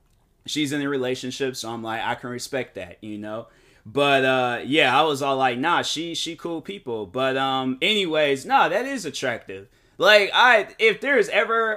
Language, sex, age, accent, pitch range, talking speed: English, male, 20-39, American, 130-160 Hz, 190 wpm